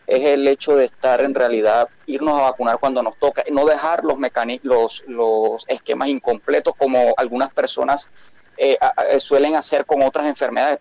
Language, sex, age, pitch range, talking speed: Spanish, male, 30-49, 130-165 Hz, 160 wpm